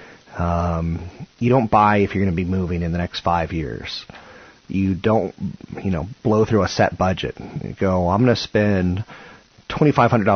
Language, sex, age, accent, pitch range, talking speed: English, male, 30-49, American, 85-100 Hz, 180 wpm